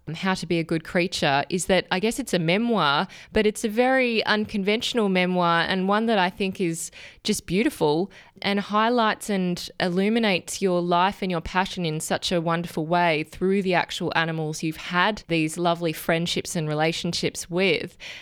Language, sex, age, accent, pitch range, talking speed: English, female, 20-39, Australian, 165-200 Hz, 175 wpm